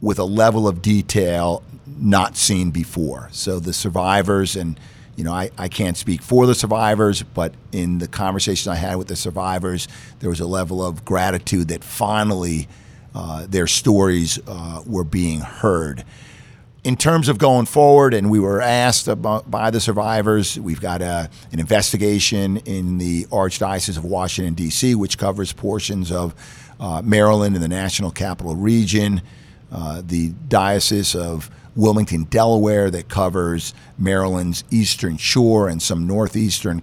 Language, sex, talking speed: English, male, 155 wpm